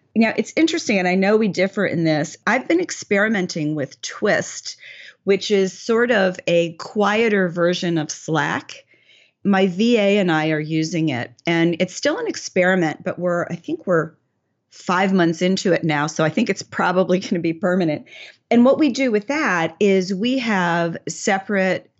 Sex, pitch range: female, 160-190 Hz